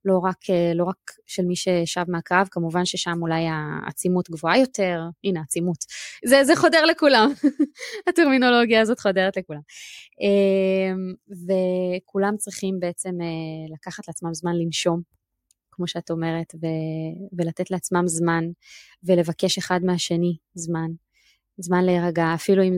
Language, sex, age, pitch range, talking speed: Hebrew, female, 20-39, 175-205 Hz, 120 wpm